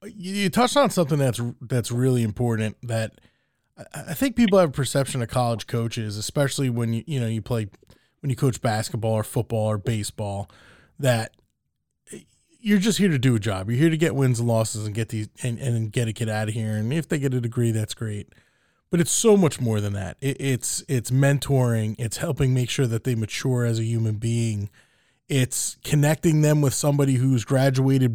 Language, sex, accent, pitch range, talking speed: English, male, American, 115-150 Hz, 205 wpm